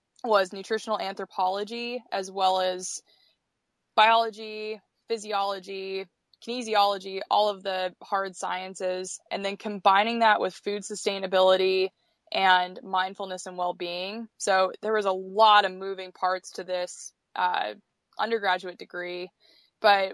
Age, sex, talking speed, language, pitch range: 20-39, female, 115 wpm, English, 185-210 Hz